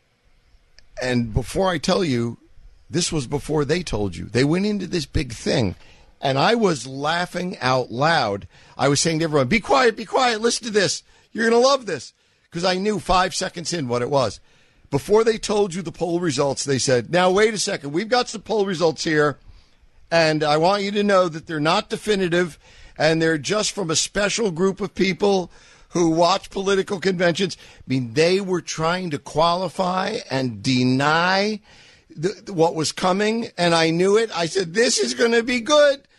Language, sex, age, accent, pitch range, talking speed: English, male, 50-69, American, 145-200 Hz, 195 wpm